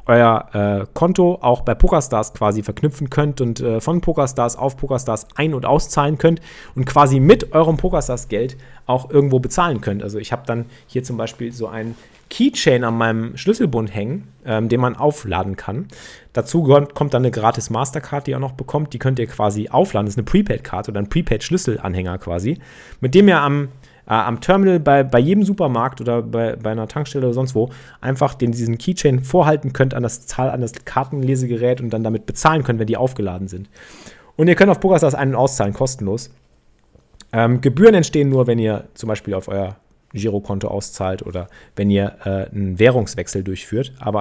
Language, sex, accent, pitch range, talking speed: German, male, German, 110-140 Hz, 185 wpm